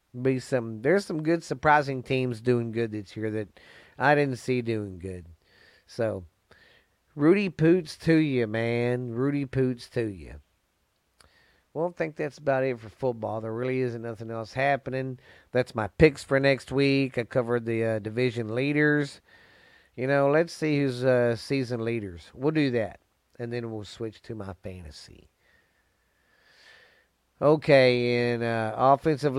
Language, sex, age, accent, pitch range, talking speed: English, male, 40-59, American, 110-140 Hz, 150 wpm